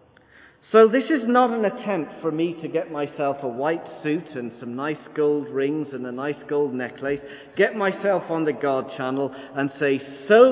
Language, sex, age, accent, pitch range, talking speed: English, male, 40-59, British, 140-195 Hz, 190 wpm